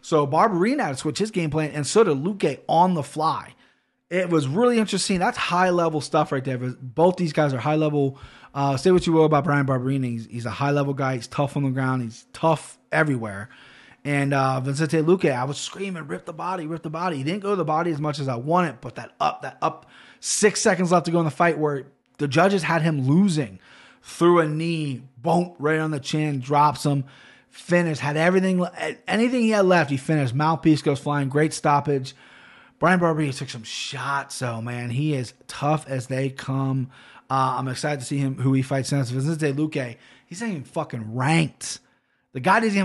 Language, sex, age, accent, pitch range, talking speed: English, male, 20-39, American, 135-175 Hz, 215 wpm